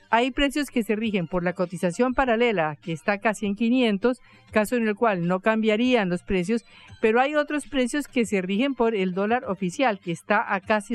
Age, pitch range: 50-69, 180-240 Hz